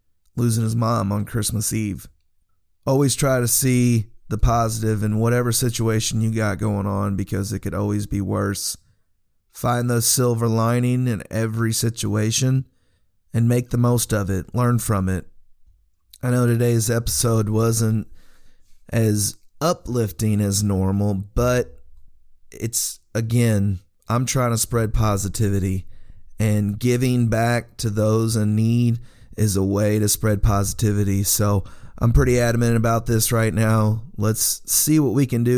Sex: male